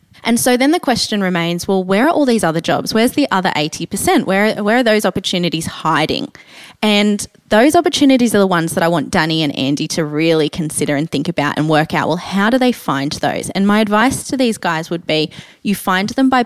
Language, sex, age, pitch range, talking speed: English, female, 20-39, 165-215 Hz, 225 wpm